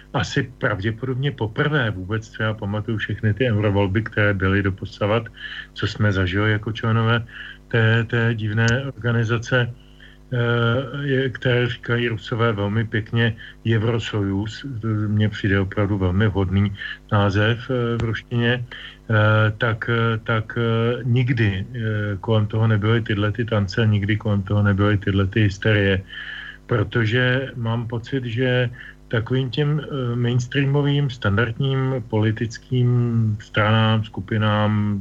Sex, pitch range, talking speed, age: male, 105-120 Hz, 105 wpm, 40-59